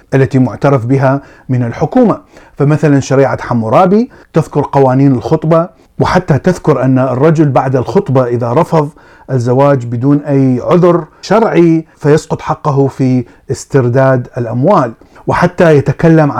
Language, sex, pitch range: Arabic, male, 130-165 Hz